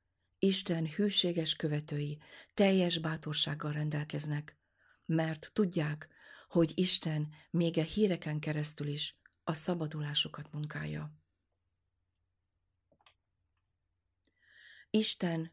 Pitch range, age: 145-170 Hz, 40-59